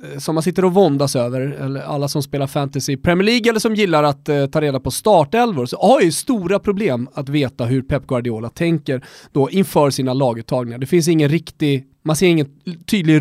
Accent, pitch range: native, 140-190 Hz